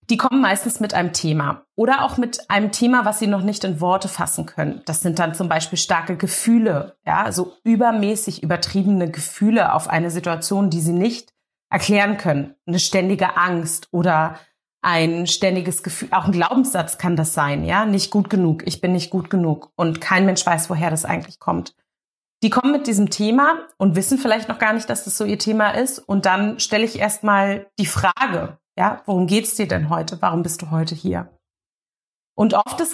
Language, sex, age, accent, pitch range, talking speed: German, female, 30-49, German, 170-210 Hz, 200 wpm